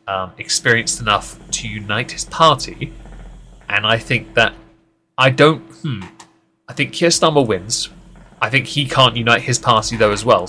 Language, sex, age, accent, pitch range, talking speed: English, male, 30-49, British, 105-130 Hz, 165 wpm